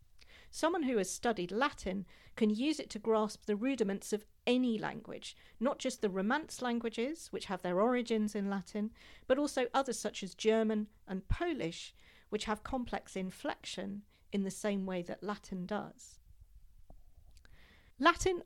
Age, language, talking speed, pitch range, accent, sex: 40-59, English, 150 wpm, 185-250 Hz, British, female